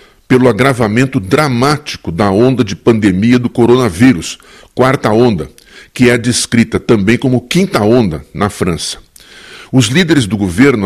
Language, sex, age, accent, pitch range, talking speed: Portuguese, male, 60-79, Brazilian, 100-130 Hz, 135 wpm